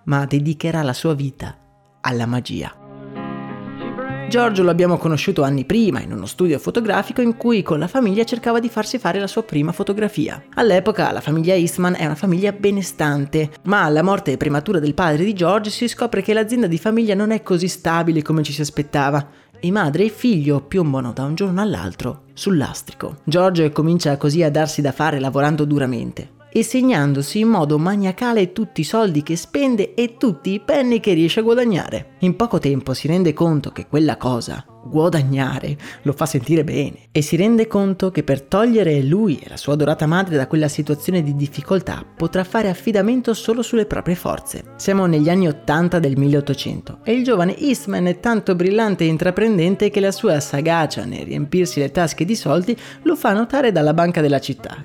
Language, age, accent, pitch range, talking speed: Italian, 30-49, native, 145-210 Hz, 185 wpm